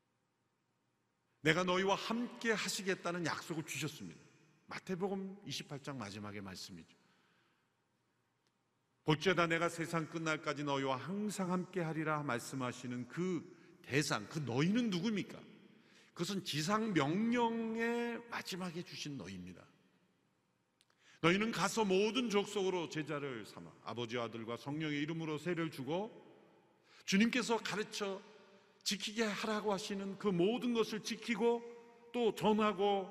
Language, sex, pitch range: Korean, male, 140-200 Hz